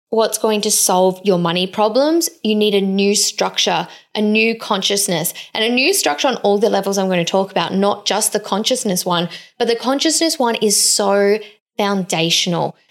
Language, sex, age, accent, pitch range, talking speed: English, female, 20-39, Australian, 205-265 Hz, 185 wpm